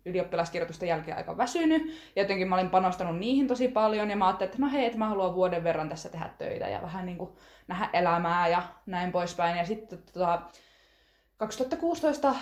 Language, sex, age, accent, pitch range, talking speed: Finnish, female, 20-39, native, 170-230 Hz, 190 wpm